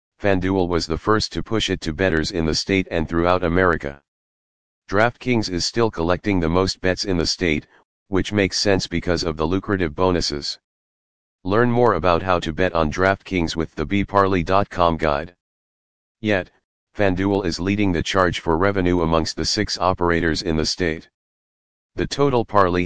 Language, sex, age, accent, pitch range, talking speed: English, male, 40-59, American, 85-100 Hz, 165 wpm